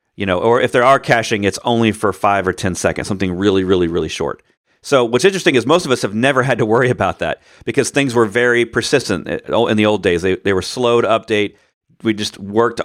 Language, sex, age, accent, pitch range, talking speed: English, male, 40-59, American, 100-120 Hz, 240 wpm